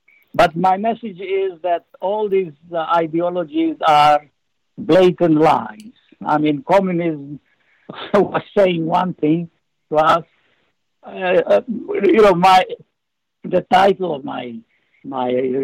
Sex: male